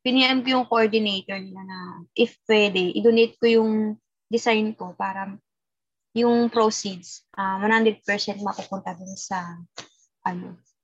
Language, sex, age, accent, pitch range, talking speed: Filipino, female, 20-39, native, 195-240 Hz, 125 wpm